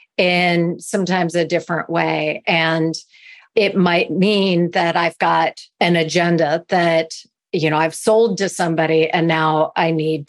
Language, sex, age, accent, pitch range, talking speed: English, female, 40-59, American, 165-205 Hz, 145 wpm